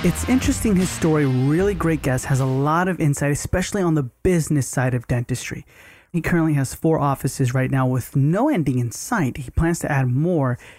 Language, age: English, 30-49